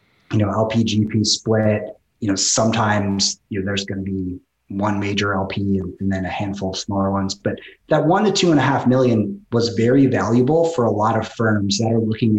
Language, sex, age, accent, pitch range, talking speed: English, male, 30-49, American, 100-120 Hz, 215 wpm